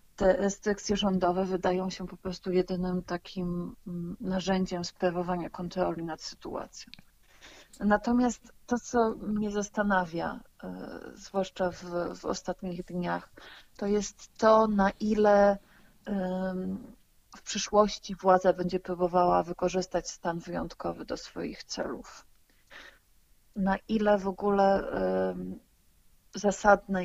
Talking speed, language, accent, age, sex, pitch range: 100 wpm, Polish, native, 30-49, female, 180-200 Hz